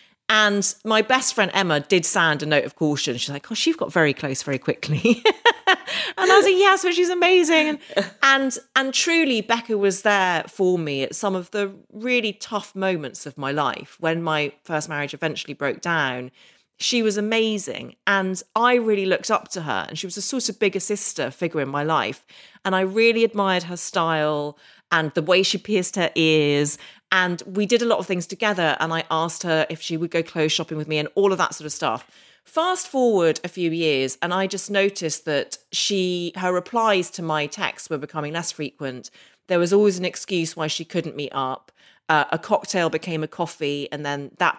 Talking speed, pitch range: 210 wpm, 155-210 Hz